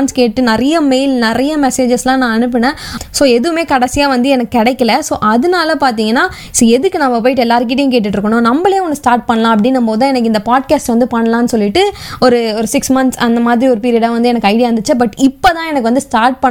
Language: Tamil